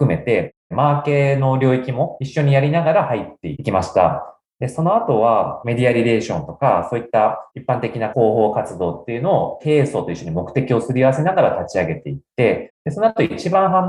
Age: 30-49